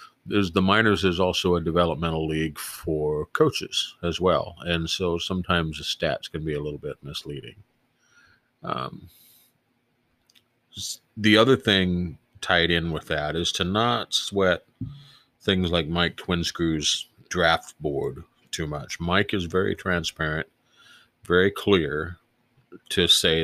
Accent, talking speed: American, 130 wpm